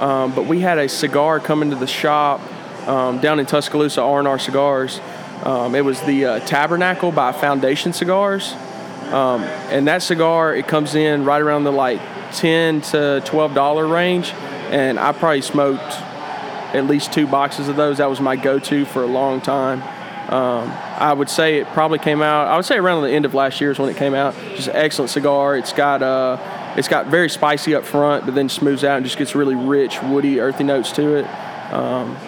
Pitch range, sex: 135-150 Hz, male